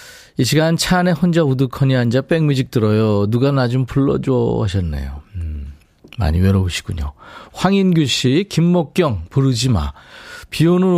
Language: Korean